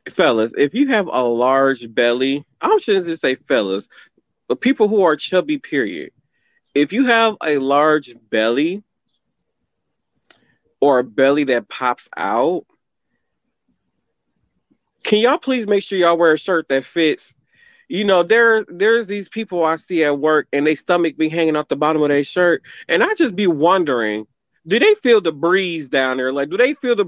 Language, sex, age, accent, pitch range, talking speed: English, male, 30-49, American, 145-210 Hz, 175 wpm